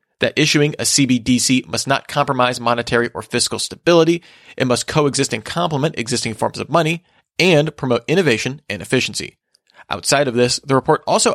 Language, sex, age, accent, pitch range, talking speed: English, male, 30-49, American, 120-155 Hz, 165 wpm